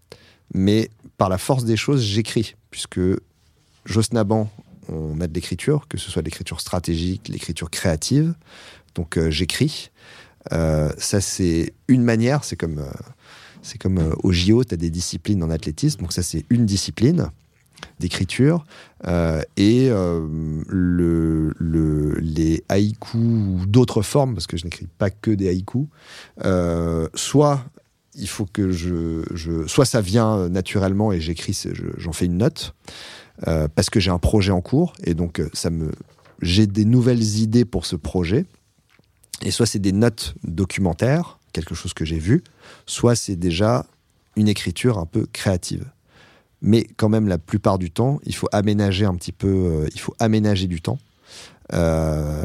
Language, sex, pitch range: French, male, 85-110 Hz